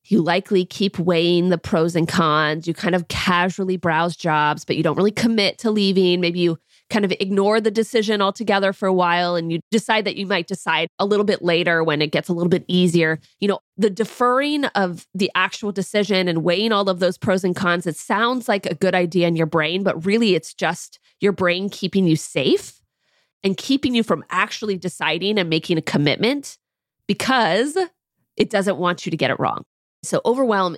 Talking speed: 205 wpm